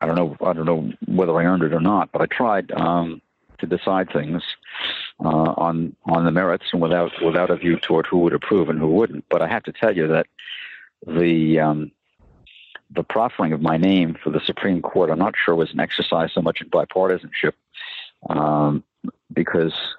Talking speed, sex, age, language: 200 wpm, male, 50-69, English